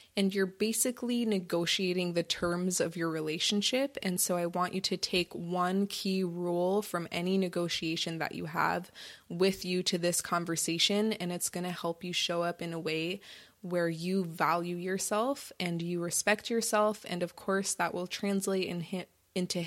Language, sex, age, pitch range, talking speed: English, female, 20-39, 170-195 Hz, 170 wpm